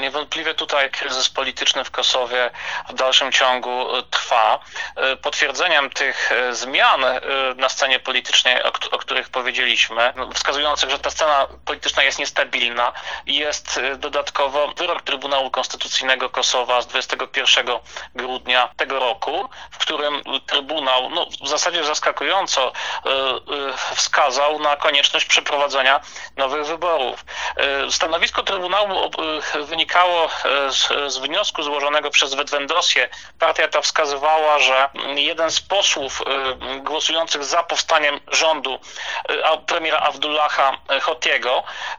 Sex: male